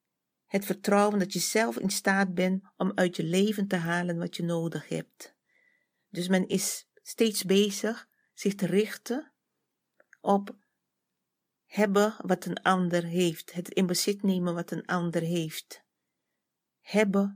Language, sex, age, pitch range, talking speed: Dutch, female, 40-59, 180-210 Hz, 140 wpm